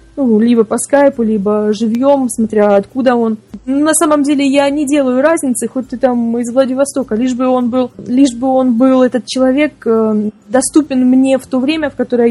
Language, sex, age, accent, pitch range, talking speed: Russian, female, 20-39, native, 225-265 Hz, 170 wpm